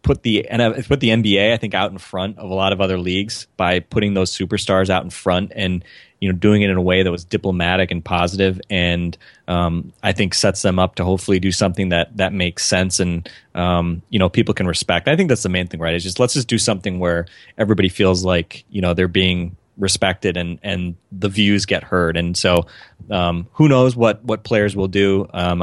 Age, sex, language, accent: 20-39, male, English, American